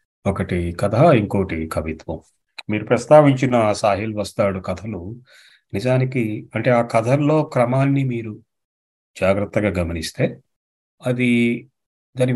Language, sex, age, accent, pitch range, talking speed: Telugu, male, 40-59, native, 90-125 Hz, 90 wpm